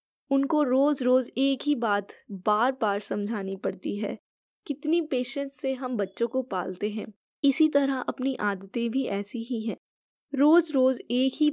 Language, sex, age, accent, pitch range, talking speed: Hindi, female, 20-39, native, 205-260 Hz, 160 wpm